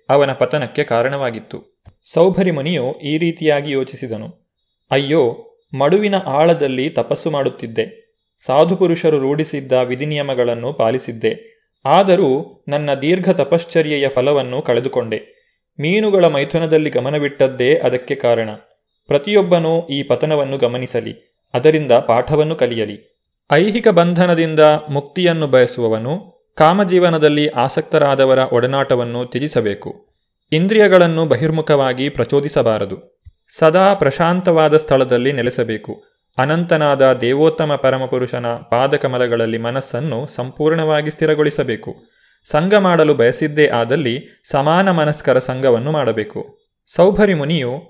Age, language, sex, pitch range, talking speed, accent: 30-49, Kannada, male, 130-165 Hz, 85 wpm, native